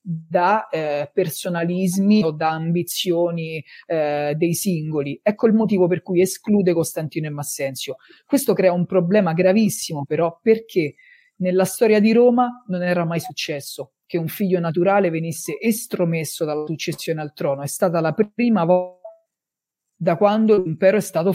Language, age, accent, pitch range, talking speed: Italian, 40-59, native, 160-205 Hz, 150 wpm